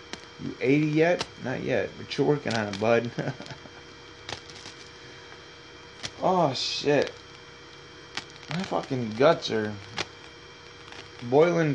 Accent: American